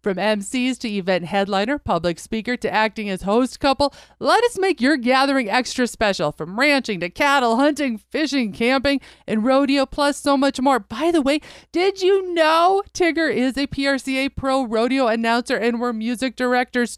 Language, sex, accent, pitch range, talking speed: English, female, American, 205-265 Hz, 175 wpm